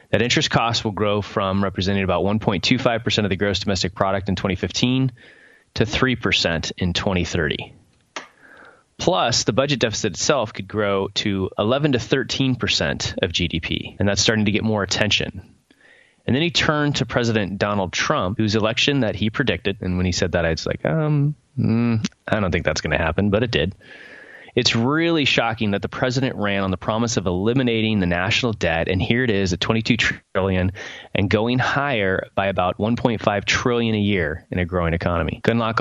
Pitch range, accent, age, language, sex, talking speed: 95-120 Hz, American, 20-39, English, male, 190 wpm